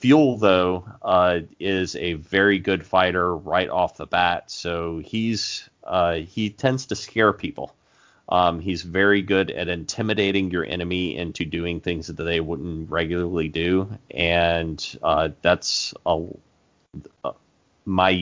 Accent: American